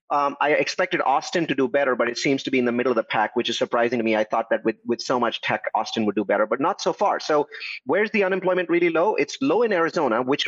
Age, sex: 30-49, male